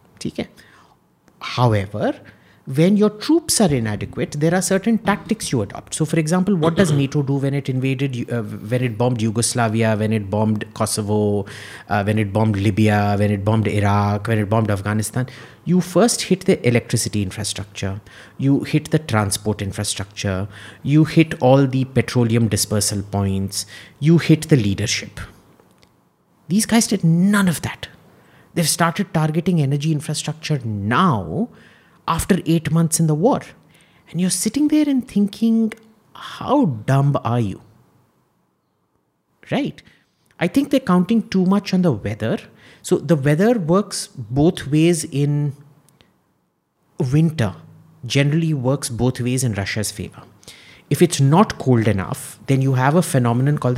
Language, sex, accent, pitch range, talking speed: Hindi, male, native, 110-165 Hz, 145 wpm